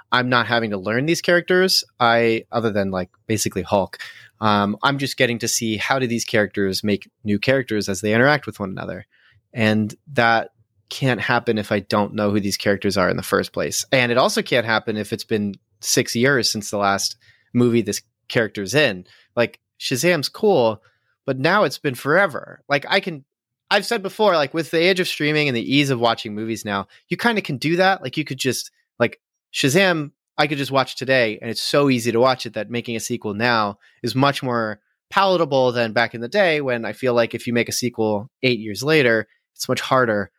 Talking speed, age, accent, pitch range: 215 wpm, 30-49, American, 110-140 Hz